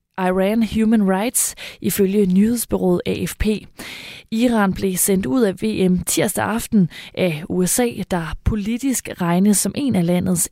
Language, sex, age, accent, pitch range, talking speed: Danish, female, 20-39, native, 180-215 Hz, 130 wpm